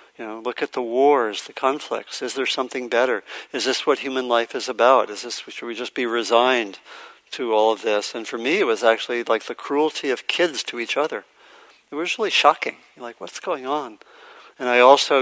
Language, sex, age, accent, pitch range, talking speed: English, male, 50-69, American, 115-130 Hz, 215 wpm